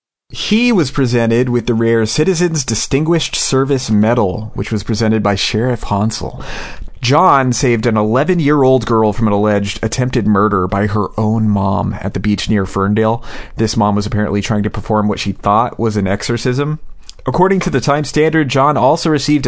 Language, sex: English, male